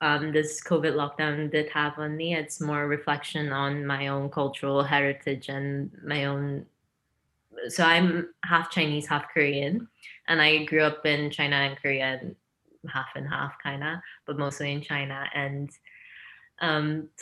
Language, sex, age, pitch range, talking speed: English, female, 20-39, 140-155 Hz, 155 wpm